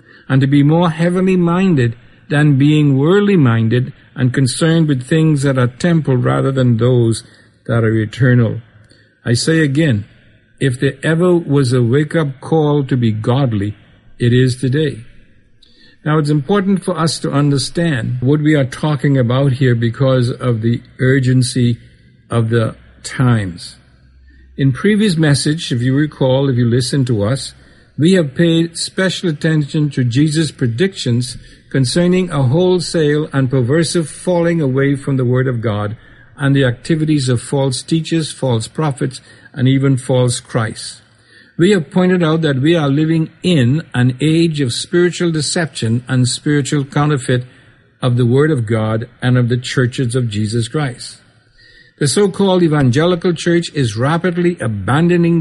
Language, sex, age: English, male, 60-79